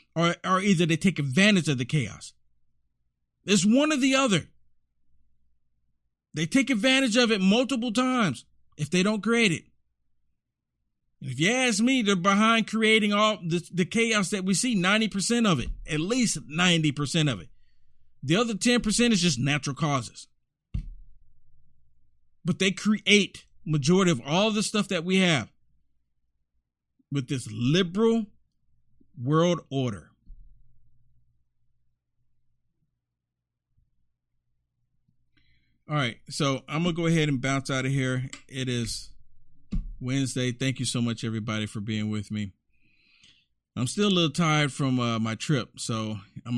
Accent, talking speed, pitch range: American, 135 wpm, 110-185 Hz